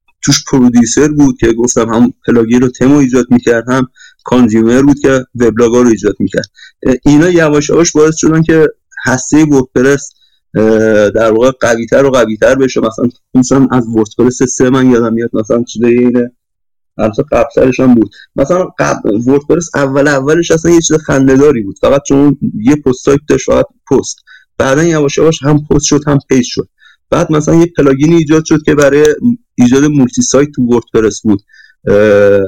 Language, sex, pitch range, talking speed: Persian, male, 120-150 Hz, 165 wpm